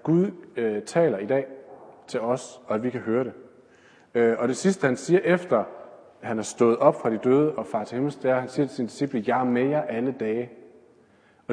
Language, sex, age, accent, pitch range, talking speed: Danish, male, 40-59, native, 120-165 Hz, 240 wpm